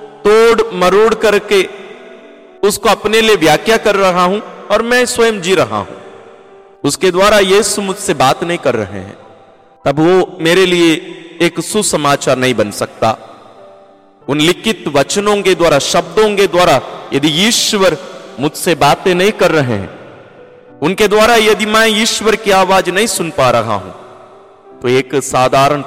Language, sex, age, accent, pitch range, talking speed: Hindi, male, 40-59, native, 140-210 Hz, 150 wpm